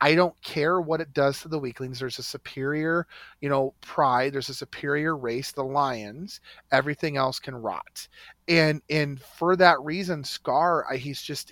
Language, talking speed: English, 170 wpm